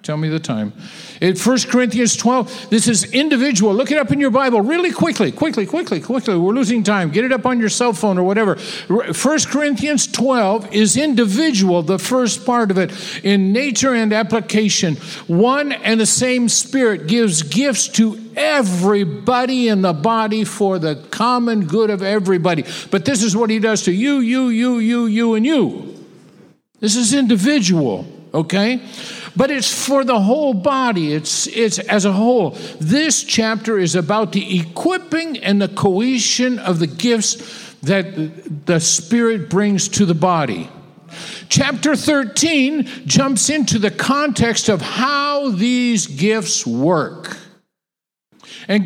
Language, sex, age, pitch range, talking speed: English, male, 50-69, 195-255 Hz, 155 wpm